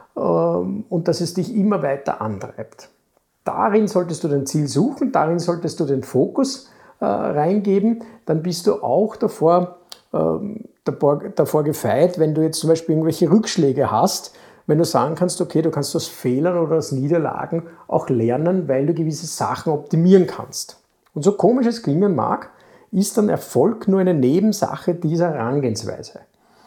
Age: 50-69